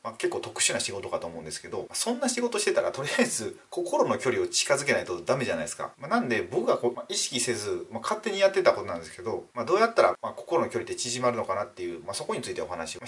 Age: 30-49